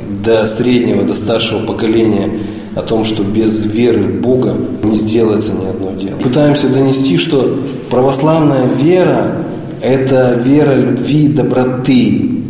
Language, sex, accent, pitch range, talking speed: Russian, male, native, 105-120 Hz, 130 wpm